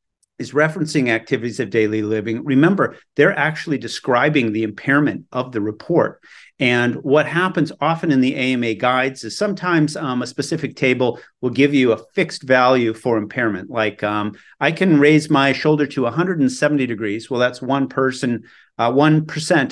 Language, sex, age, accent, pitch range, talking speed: English, male, 40-59, American, 115-150 Hz, 160 wpm